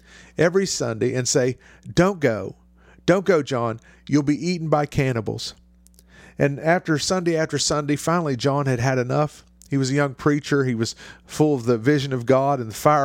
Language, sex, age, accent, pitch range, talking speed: English, male, 50-69, American, 125-155 Hz, 185 wpm